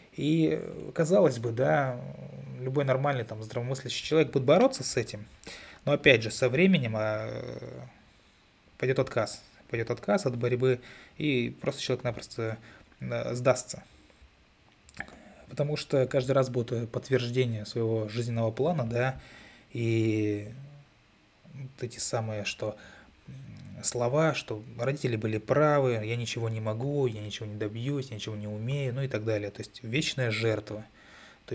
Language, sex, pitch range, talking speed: Russian, male, 110-135 Hz, 135 wpm